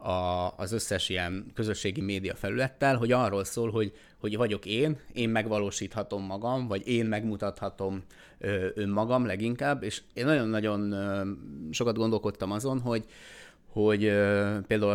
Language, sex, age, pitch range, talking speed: Hungarian, male, 30-49, 95-115 Hz, 135 wpm